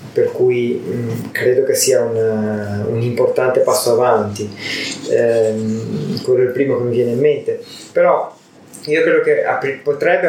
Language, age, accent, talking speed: Italian, 20-39, native, 150 wpm